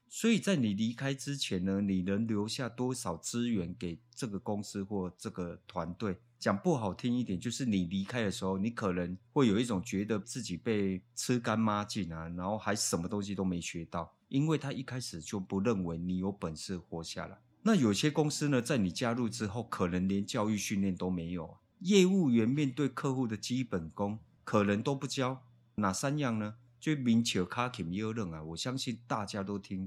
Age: 30-49